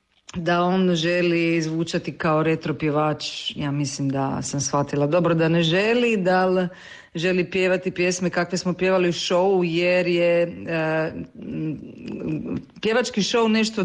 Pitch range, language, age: 160-180 Hz, Croatian, 40-59